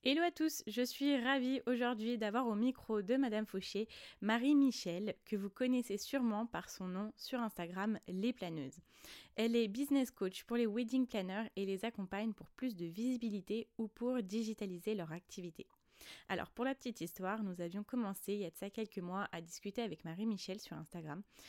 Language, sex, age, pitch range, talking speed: French, female, 20-39, 185-230 Hz, 185 wpm